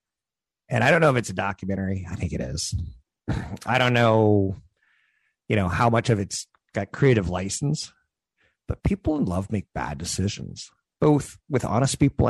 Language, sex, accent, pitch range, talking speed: English, male, American, 95-120 Hz, 170 wpm